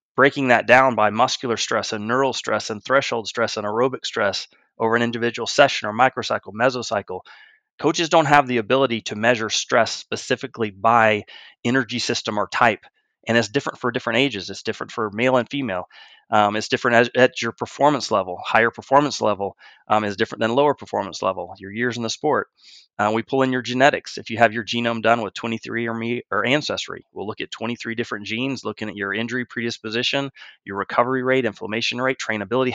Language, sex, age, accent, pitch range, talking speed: English, male, 30-49, American, 105-125 Hz, 190 wpm